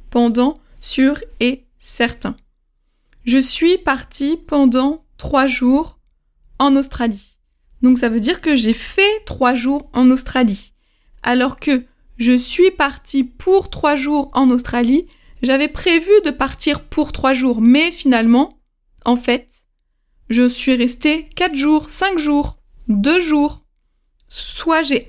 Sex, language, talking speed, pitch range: female, French, 130 wpm, 245-295 Hz